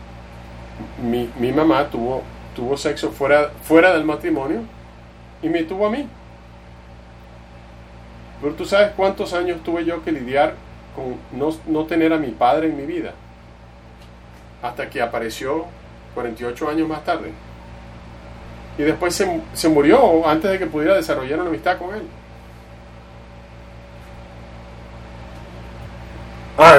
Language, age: English, 30-49